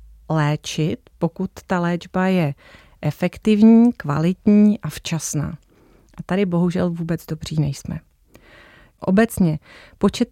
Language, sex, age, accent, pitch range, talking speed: Czech, female, 30-49, native, 160-200 Hz, 100 wpm